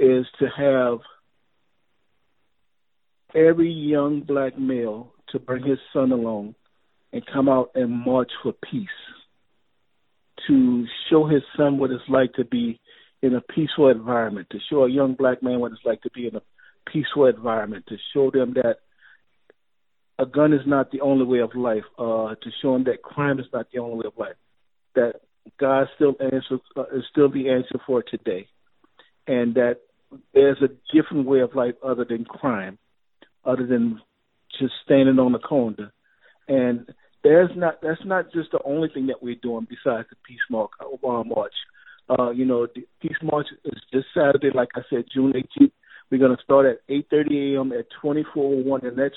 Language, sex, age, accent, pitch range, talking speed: English, male, 50-69, American, 125-145 Hz, 175 wpm